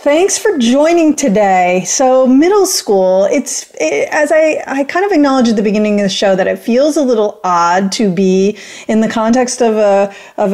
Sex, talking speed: female, 200 wpm